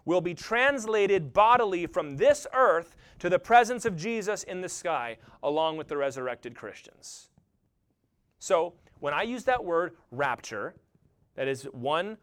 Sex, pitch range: male, 160-235 Hz